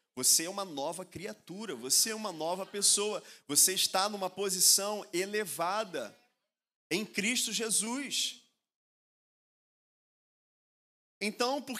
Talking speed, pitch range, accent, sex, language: 100 wpm, 165-210 Hz, Brazilian, male, Portuguese